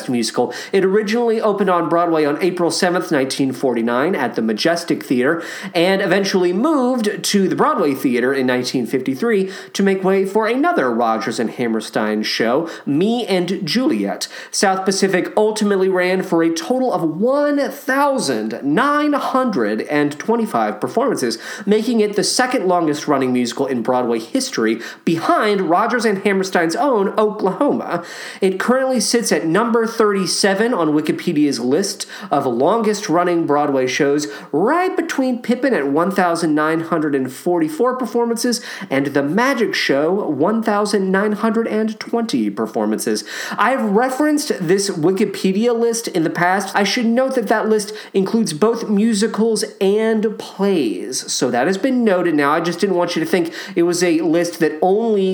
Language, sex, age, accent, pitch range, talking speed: English, male, 40-59, American, 165-225 Hz, 135 wpm